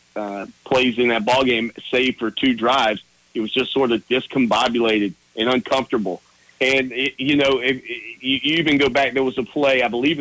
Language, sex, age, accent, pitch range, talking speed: English, male, 40-59, American, 115-145 Hz, 200 wpm